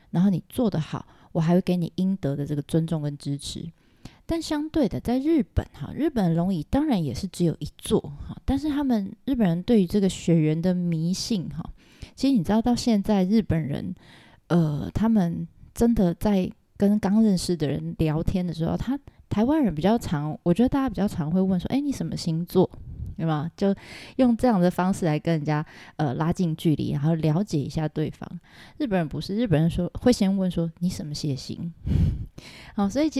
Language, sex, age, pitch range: Chinese, female, 20-39, 160-220 Hz